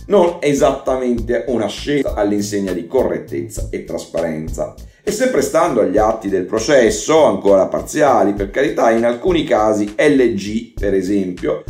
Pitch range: 105-135 Hz